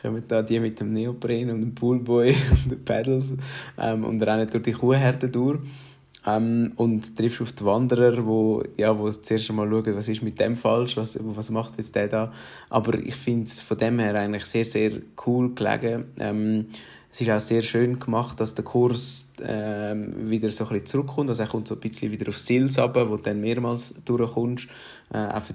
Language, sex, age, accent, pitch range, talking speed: German, male, 20-39, Austrian, 105-120 Hz, 205 wpm